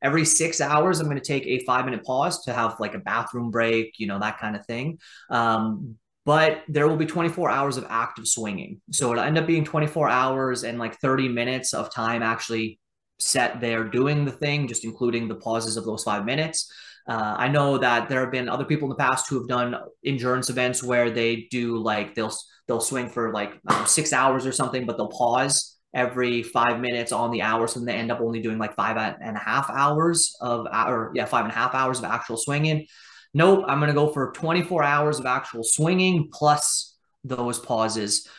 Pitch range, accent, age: 115-145 Hz, American, 30-49